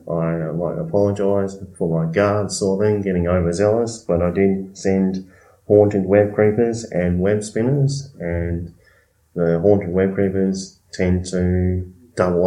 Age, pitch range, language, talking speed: 20-39, 90-100 Hz, English, 135 wpm